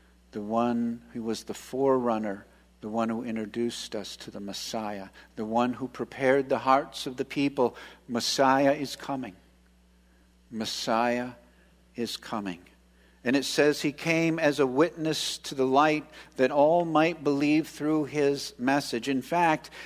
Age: 50-69